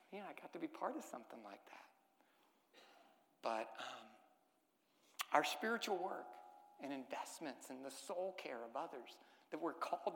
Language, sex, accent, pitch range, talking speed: English, male, American, 155-245 Hz, 155 wpm